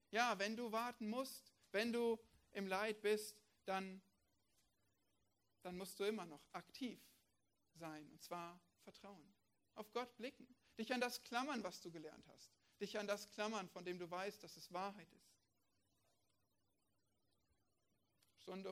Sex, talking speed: male, 145 wpm